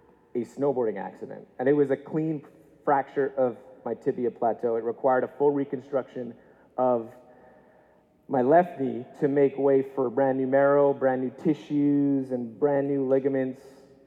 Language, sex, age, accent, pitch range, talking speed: English, male, 30-49, American, 130-160 Hz, 155 wpm